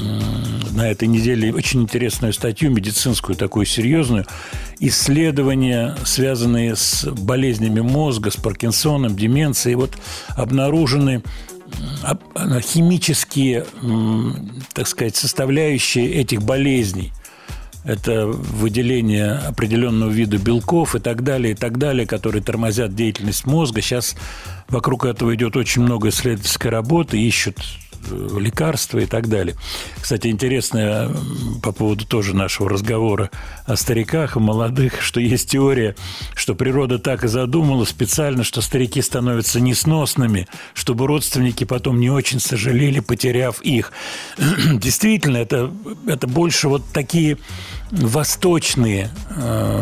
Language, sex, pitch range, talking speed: Russian, male, 110-140 Hz, 110 wpm